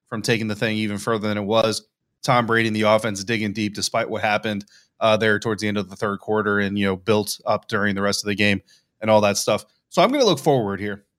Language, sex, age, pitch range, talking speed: English, male, 30-49, 110-135 Hz, 265 wpm